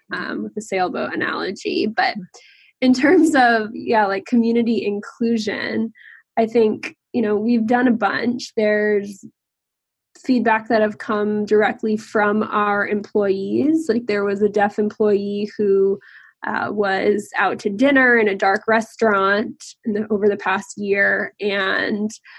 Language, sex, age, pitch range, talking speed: English, female, 10-29, 205-235 Hz, 135 wpm